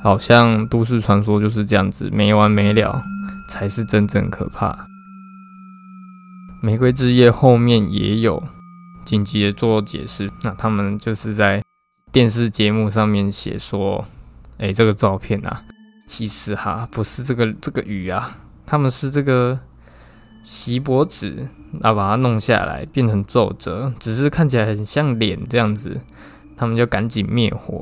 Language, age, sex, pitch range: Chinese, 20-39, male, 105-120 Hz